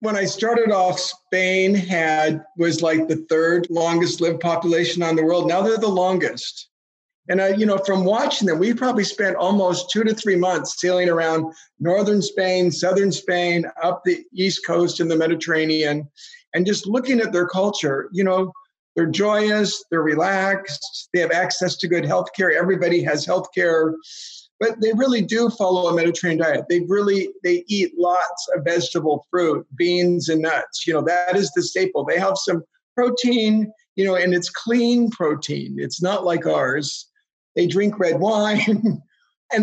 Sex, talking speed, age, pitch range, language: male, 175 wpm, 50-69, 170-210 Hz, English